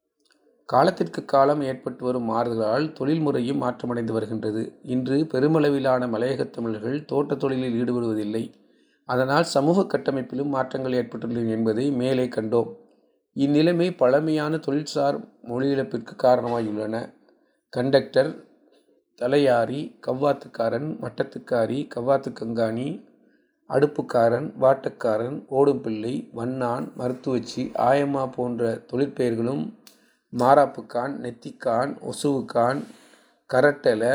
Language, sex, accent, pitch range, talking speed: Tamil, male, native, 120-140 Hz, 85 wpm